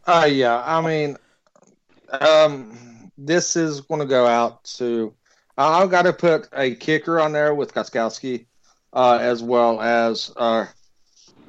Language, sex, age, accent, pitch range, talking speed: English, male, 40-59, American, 115-135 Hz, 145 wpm